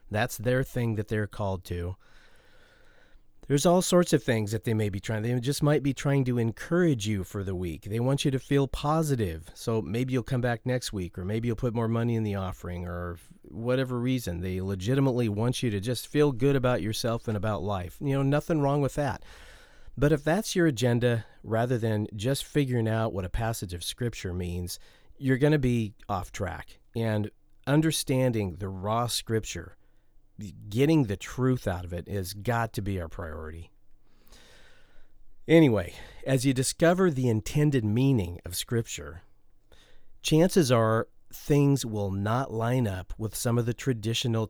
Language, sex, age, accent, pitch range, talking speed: English, male, 40-59, American, 100-135 Hz, 180 wpm